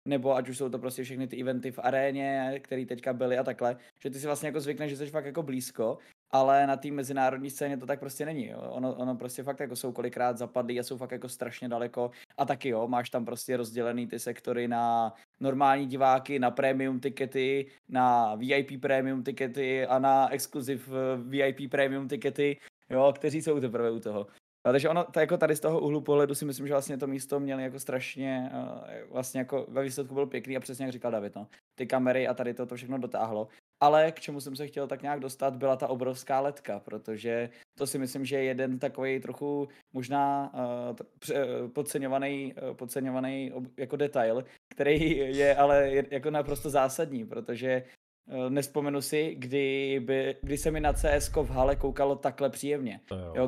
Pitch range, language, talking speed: 130-145 Hz, Czech, 190 wpm